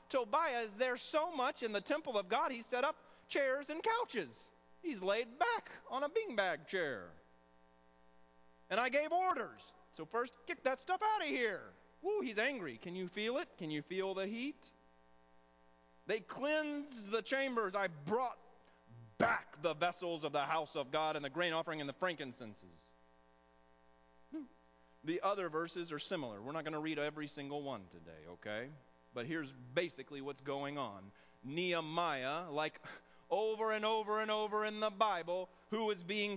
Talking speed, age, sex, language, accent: 170 wpm, 30-49, male, English, American